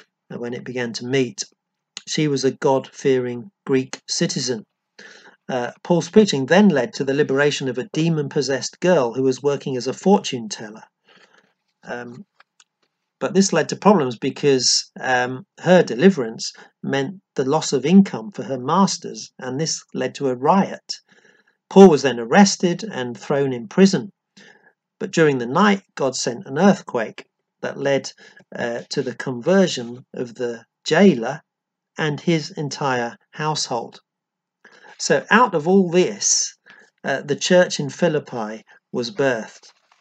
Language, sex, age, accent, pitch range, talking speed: English, male, 40-59, British, 130-190 Hz, 140 wpm